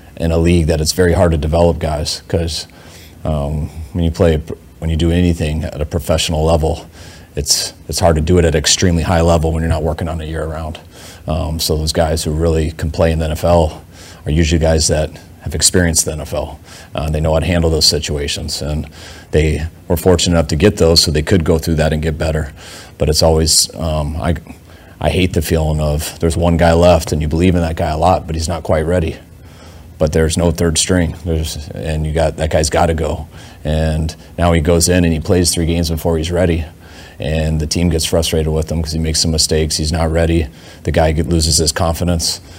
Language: English